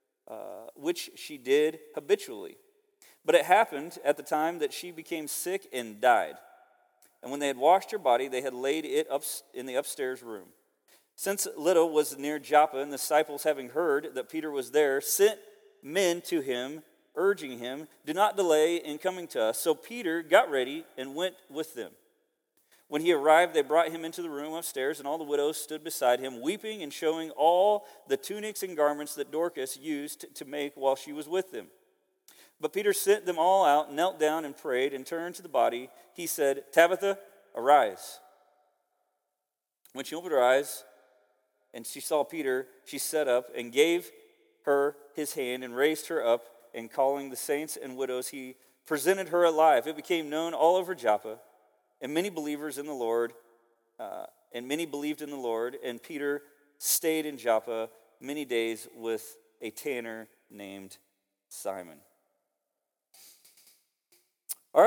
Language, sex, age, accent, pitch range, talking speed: English, male, 40-59, American, 130-195 Hz, 170 wpm